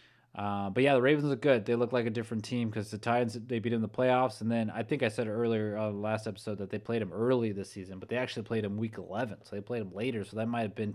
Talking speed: 300 wpm